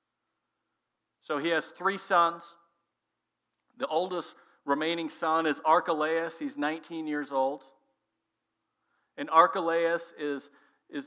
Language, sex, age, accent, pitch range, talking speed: English, male, 50-69, American, 145-170 Hz, 105 wpm